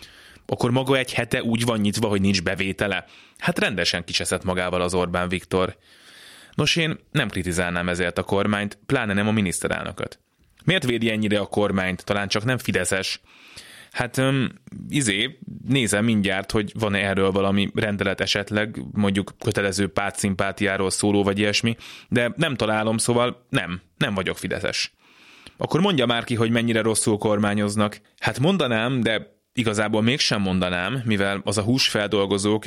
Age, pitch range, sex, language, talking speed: 20-39, 100-115 Hz, male, Hungarian, 145 wpm